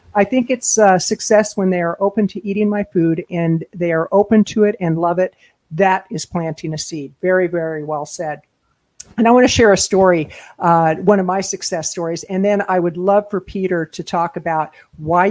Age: 50-69